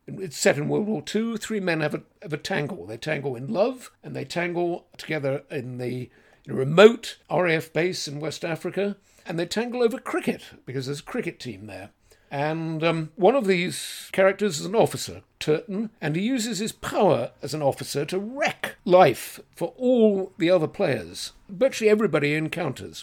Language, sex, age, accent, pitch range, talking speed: English, male, 60-79, British, 150-195 Hz, 180 wpm